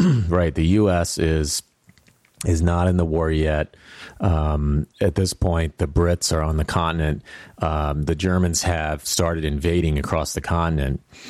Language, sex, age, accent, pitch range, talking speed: English, male, 30-49, American, 75-90 Hz, 155 wpm